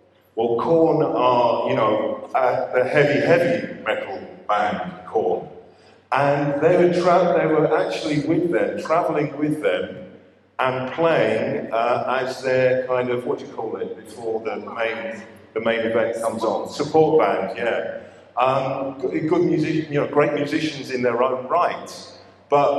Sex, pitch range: male, 130-165 Hz